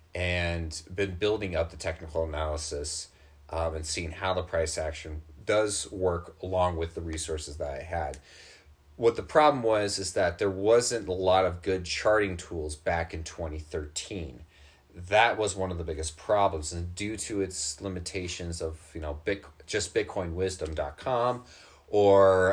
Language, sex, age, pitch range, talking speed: English, male, 30-49, 80-95 Hz, 155 wpm